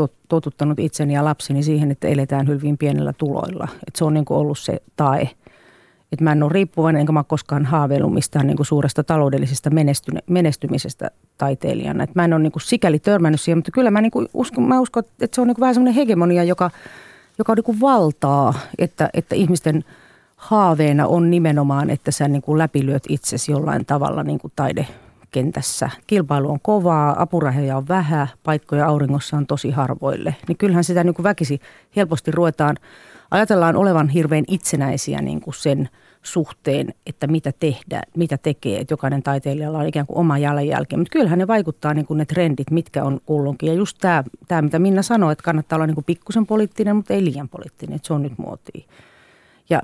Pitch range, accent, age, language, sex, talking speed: 145-175 Hz, native, 30-49, Finnish, female, 185 wpm